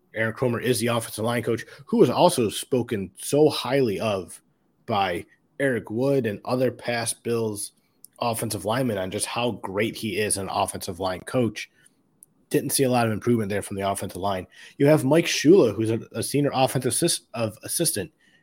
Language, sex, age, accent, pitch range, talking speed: English, male, 30-49, American, 110-140 Hz, 180 wpm